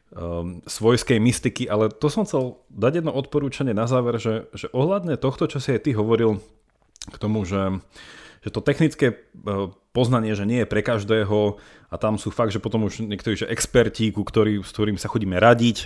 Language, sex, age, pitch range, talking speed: Slovak, male, 30-49, 100-120 Hz, 180 wpm